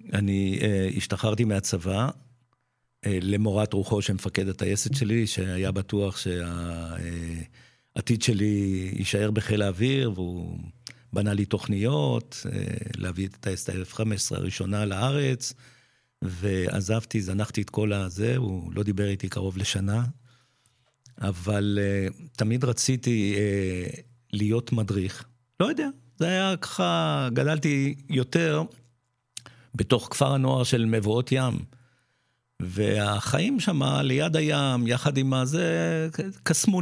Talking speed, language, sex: 110 wpm, Hebrew, male